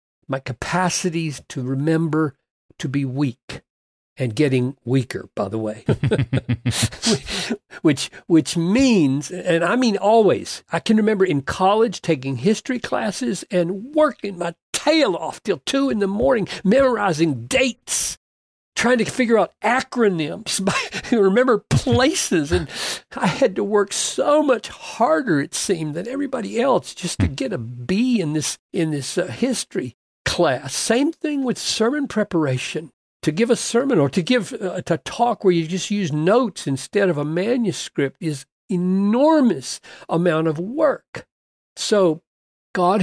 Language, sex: English, male